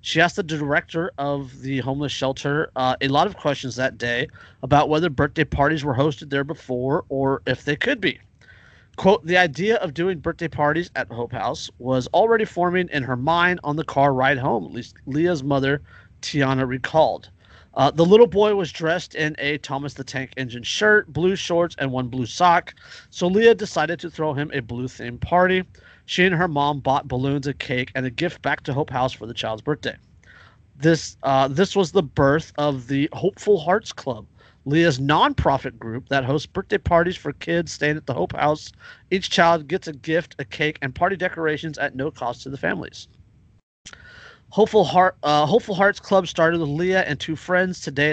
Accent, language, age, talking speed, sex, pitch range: American, English, 30-49, 195 wpm, male, 135-175 Hz